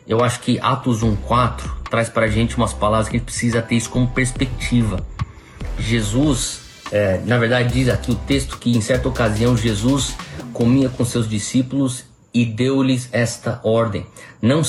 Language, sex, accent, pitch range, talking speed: Portuguese, male, Brazilian, 115-140 Hz, 170 wpm